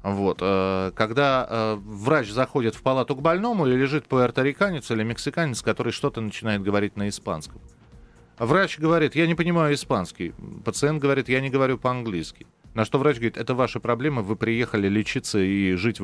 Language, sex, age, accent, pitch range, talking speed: Russian, male, 30-49, native, 115-165 Hz, 160 wpm